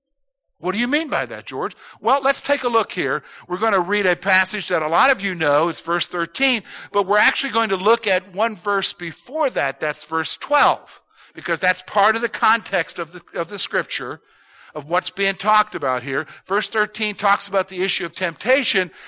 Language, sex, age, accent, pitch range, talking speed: English, male, 50-69, American, 170-240 Hz, 210 wpm